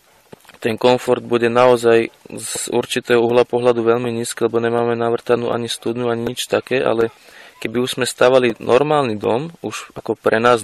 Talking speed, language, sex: 165 wpm, Slovak, male